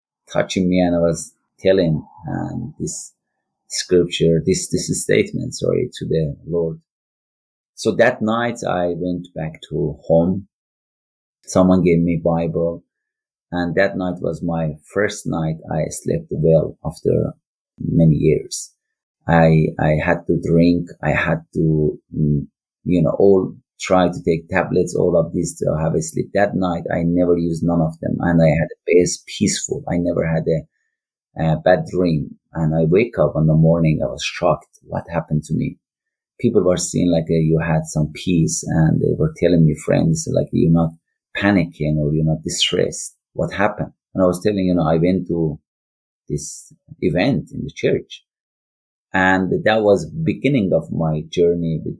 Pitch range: 80-90 Hz